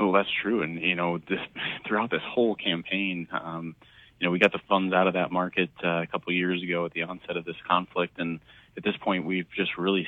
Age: 30-49